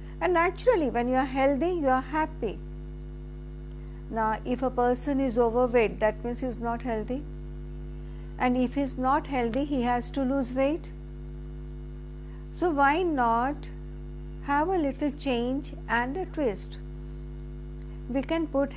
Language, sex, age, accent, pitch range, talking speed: Hindi, female, 50-69, native, 240-275 Hz, 145 wpm